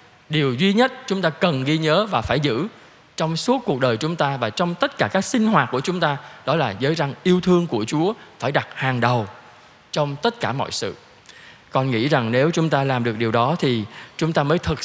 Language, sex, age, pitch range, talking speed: Vietnamese, male, 20-39, 130-180 Hz, 240 wpm